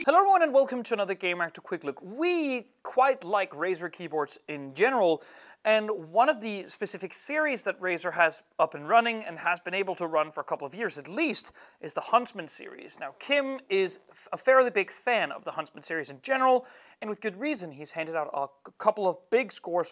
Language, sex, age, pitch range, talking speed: French, male, 30-49, 165-225 Hz, 220 wpm